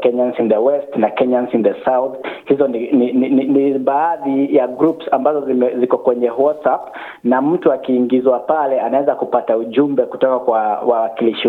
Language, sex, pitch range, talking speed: Swahili, male, 120-145 Hz, 165 wpm